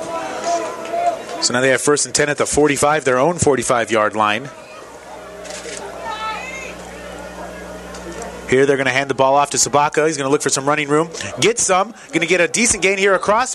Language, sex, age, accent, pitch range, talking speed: English, male, 30-49, American, 145-205 Hz, 185 wpm